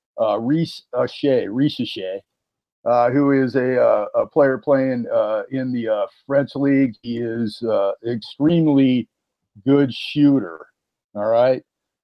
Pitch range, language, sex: 125-150 Hz, English, male